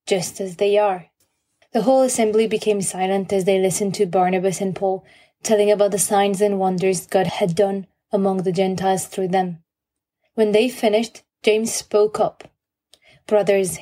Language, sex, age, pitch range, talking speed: English, female, 20-39, 195-215 Hz, 160 wpm